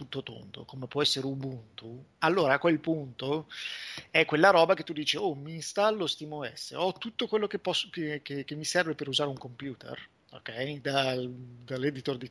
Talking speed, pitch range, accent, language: 185 wpm, 135-165 Hz, native, Italian